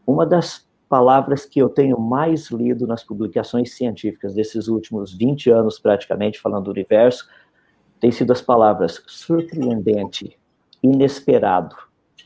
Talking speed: 120 wpm